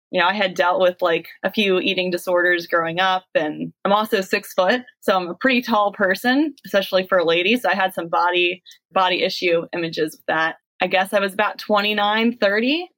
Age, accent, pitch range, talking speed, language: 20-39, American, 180-220 Hz, 210 wpm, English